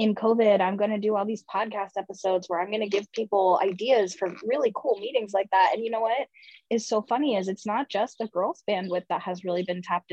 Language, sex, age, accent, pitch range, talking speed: English, female, 20-39, American, 185-220 Hz, 250 wpm